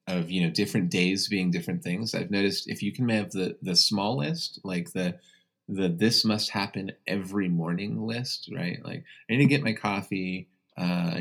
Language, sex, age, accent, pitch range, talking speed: English, male, 30-49, American, 90-135 Hz, 185 wpm